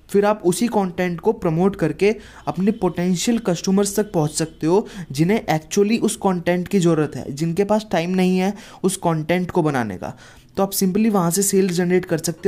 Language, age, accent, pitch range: Hindi, 20-39, native, 160-195 Hz